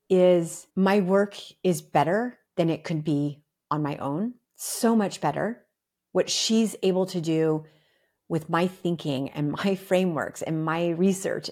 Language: English